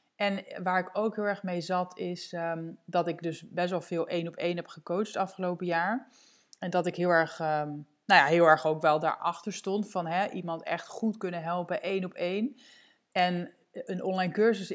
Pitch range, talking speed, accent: 165-190 Hz, 210 wpm, Dutch